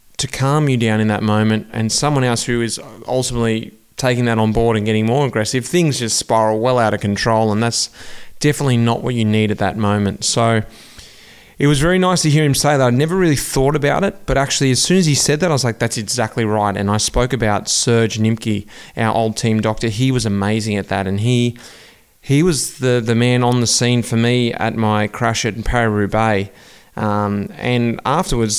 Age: 20-39